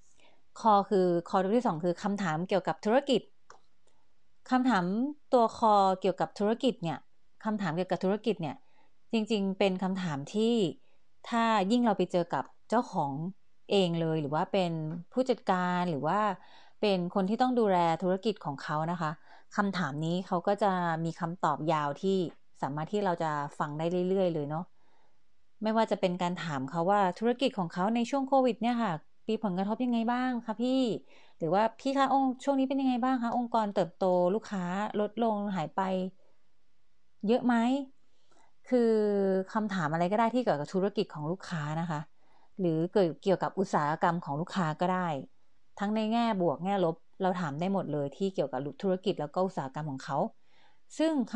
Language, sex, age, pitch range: Thai, female, 30-49, 170-225 Hz